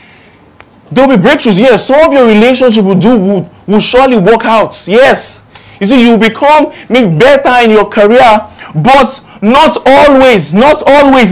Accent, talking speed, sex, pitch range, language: Nigerian, 160 wpm, male, 185-250 Hz, English